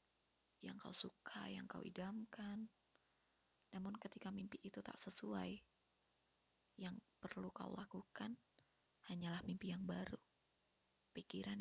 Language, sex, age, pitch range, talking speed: Indonesian, female, 20-39, 180-205 Hz, 110 wpm